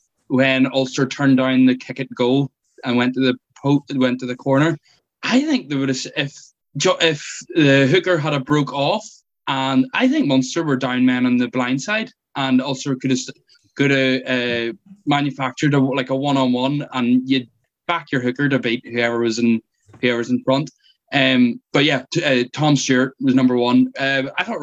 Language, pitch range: English, 125-150 Hz